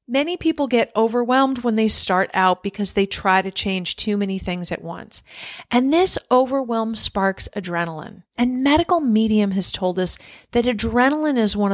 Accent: American